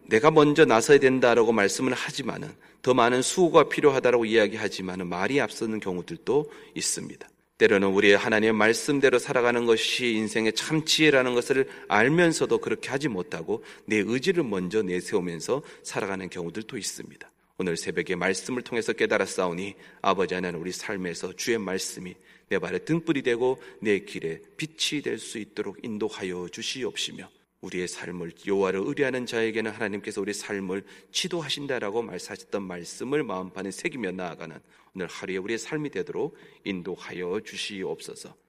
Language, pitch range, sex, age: Korean, 100-125 Hz, male, 30-49